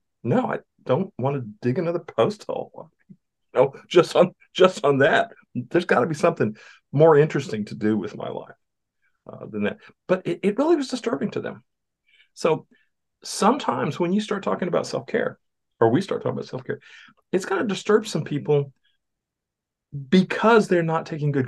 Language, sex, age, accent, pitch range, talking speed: English, male, 50-69, American, 105-150 Hz, 175 wpm